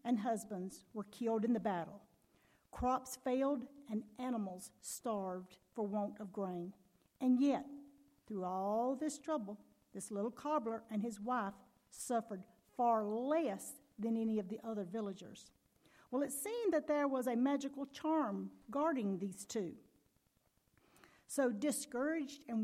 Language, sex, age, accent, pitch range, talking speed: English, female, 50-69, American, 210-280 Hz, 140 wpm